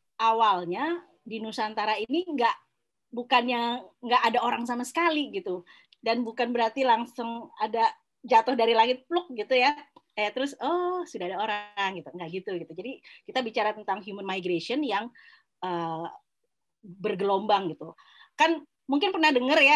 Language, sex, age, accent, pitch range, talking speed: Indonesian, female, 20-39, native, 195-255 Hz, 145 wpm